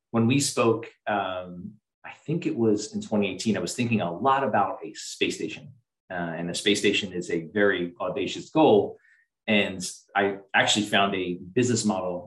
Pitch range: 95-110 Hz